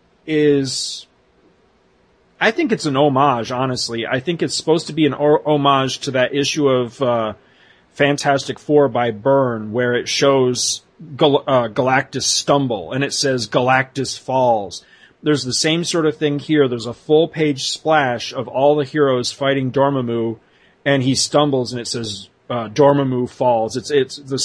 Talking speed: 155 wpm